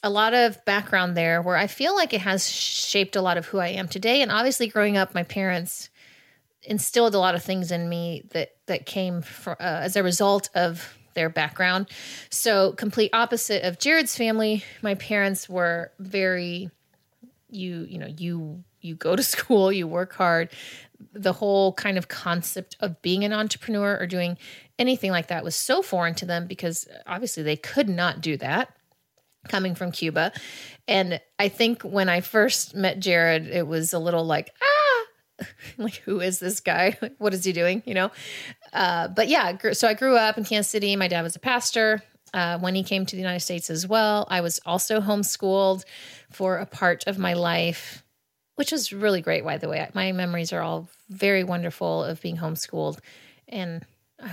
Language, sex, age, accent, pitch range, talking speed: English, female, 30-49, American, 170-210 Hz, 190 wpm